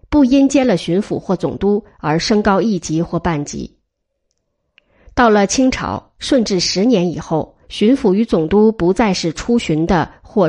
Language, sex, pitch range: Chinese, female, 175-250 Hz